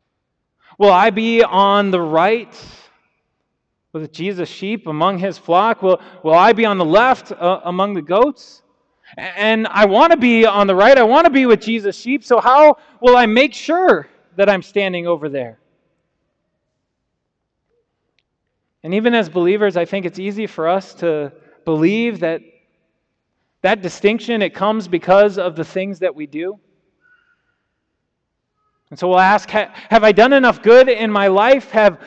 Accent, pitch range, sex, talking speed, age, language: American, 185-240 Hz, male, 160 wpm, 30-49, English